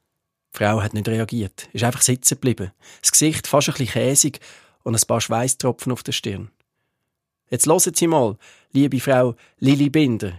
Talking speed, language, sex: 175 wpm, German, male